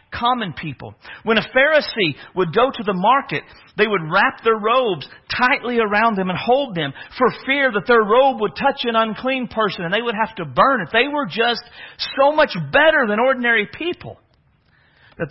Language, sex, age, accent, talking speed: English, male, 50-69, American, 190 wpm